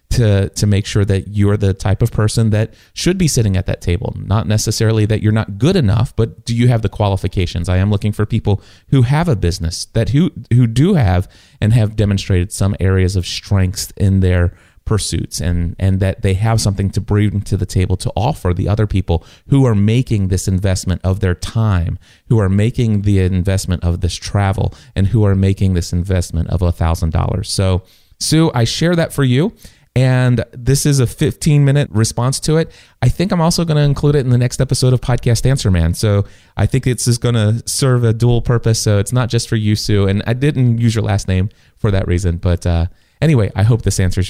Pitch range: 95-125 Hz